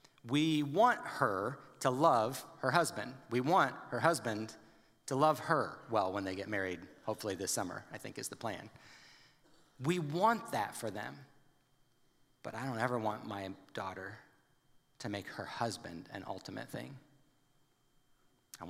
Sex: male